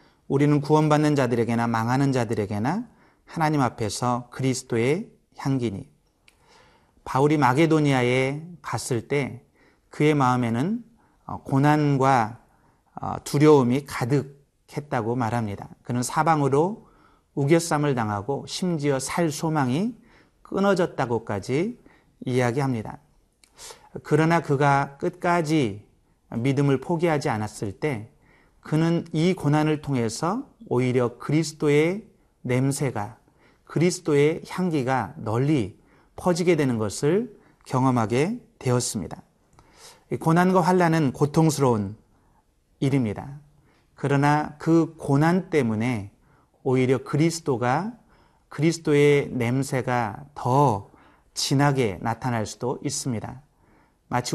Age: 30-49